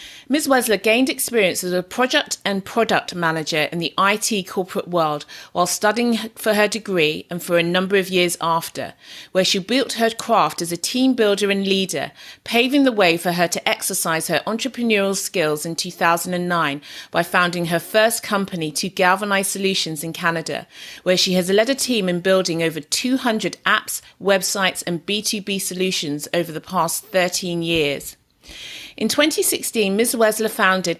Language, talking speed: English, 165 wpm